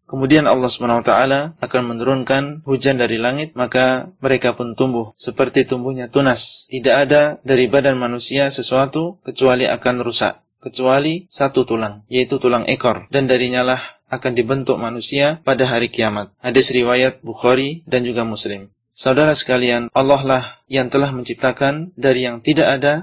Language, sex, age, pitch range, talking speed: Indonesian, male, 30-49, 125-140 Hz, 145 wpm